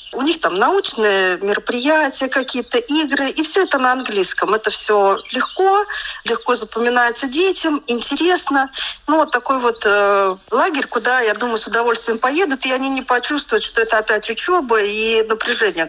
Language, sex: Russian, female